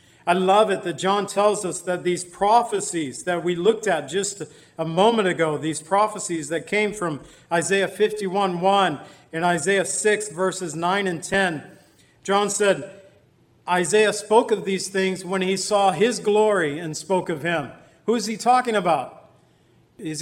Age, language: 40-59, English